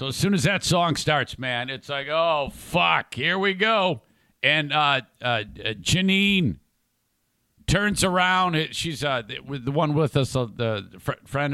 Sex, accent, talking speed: male, American, 155 wpm